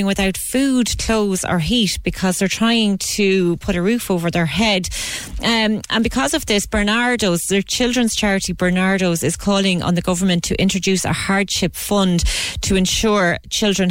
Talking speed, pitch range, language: 165 wpm, 180-210 Hz, English